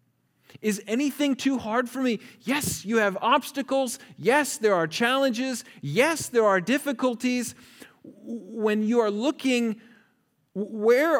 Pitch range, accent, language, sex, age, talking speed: 175-235 Hz, American, English, male, 40-59, 125 wpm